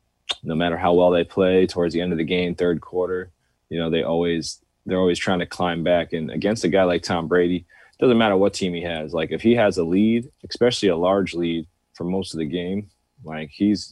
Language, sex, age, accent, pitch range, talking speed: English, male, 20-39, American, 80-90 Hz, 245 wpm